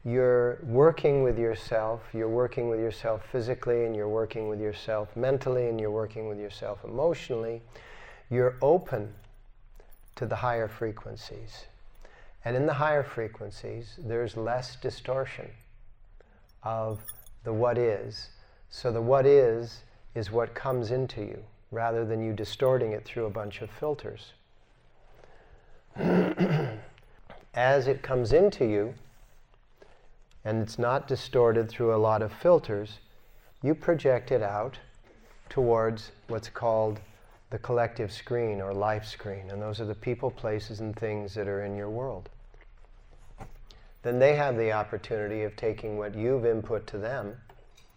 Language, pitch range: English, 105-120 Hz